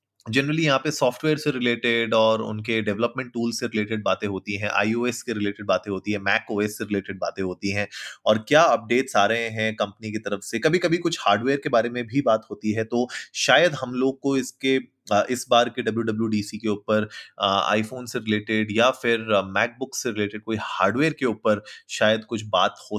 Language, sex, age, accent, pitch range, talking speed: Hindi, male, 30-49, native, 100-120 Hz, 200 wpm